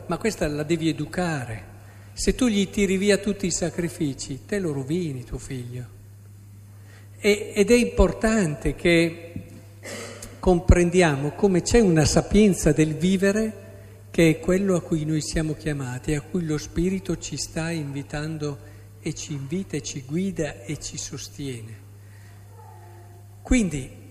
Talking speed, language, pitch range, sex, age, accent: 135 wpm, Italian, 140-220 Hz, male, 50-69, native